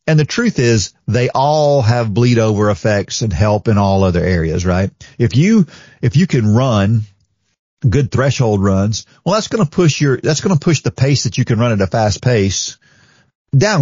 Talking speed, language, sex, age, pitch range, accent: 205 wpm, English, male, 40-59, 105-135 Hz, American